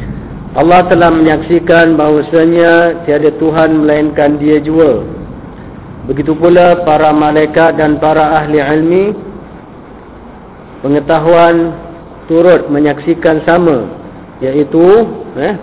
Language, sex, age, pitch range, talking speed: Malay, male, 50-69, 150-170 Hz, 90 wpm